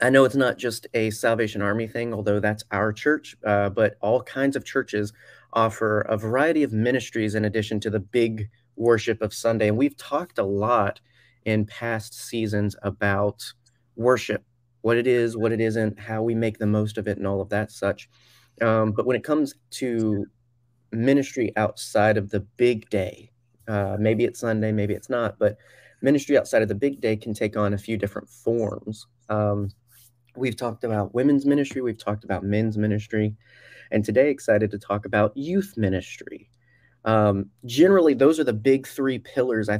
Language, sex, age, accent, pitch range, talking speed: English, male, 30-49, American, 105-120 Hz, 180 wpm